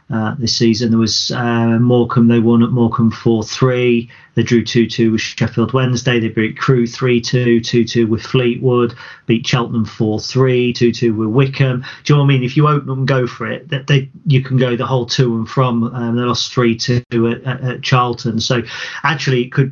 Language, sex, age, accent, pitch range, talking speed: English, male, 40-59, British, 115-125 Hz, 200 wpm